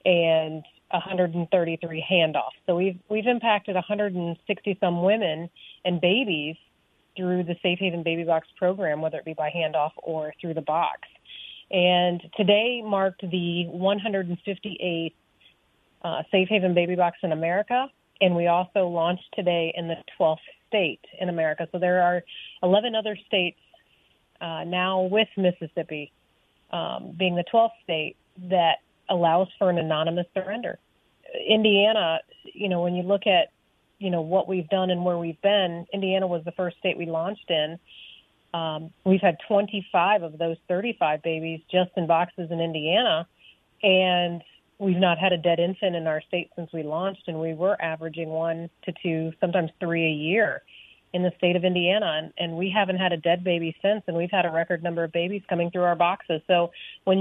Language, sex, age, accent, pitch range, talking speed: English, female, 30-49, American, 165-190 Hz, 170 wpm